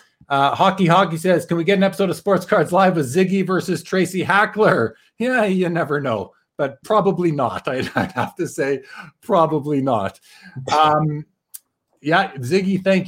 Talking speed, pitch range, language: 165 wpm, 160-190 Hz, English